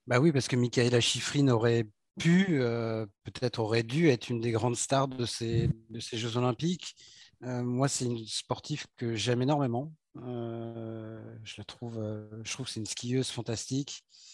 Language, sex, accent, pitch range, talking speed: French, male, French, 120-150 Hz, 180 wpm